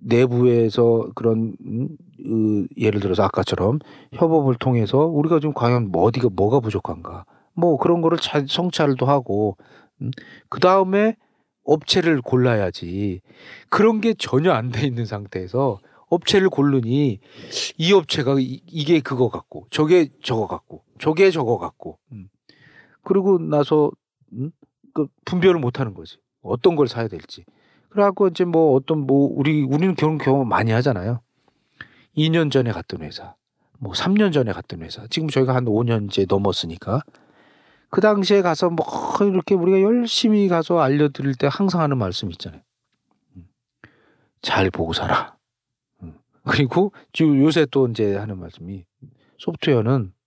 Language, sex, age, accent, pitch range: Korean, male, 40-59, native, 115-170 Hz